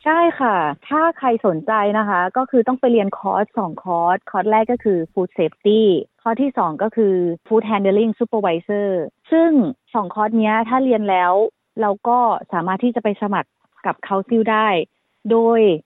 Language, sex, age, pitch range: Thai, female, 30-49, 190-235 Hz